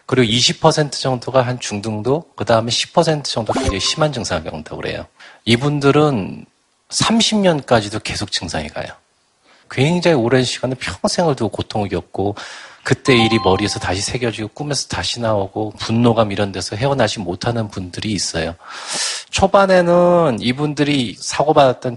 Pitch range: 105-145 Hz